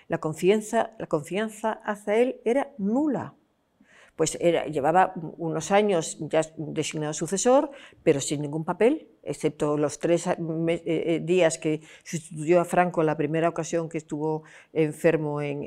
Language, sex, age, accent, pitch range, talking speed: Spanish, female, 50-69, Spanish, 160-215 Hz, 135 wpm